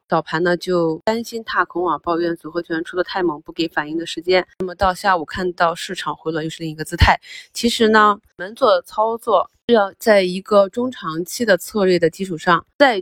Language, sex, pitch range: Chinese, female, 170-205 Hz